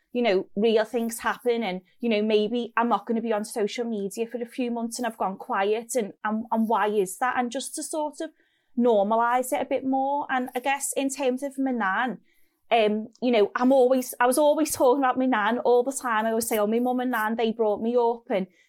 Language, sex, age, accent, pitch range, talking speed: English, female, 30-49, British, 225-260 Hz, 245 wpm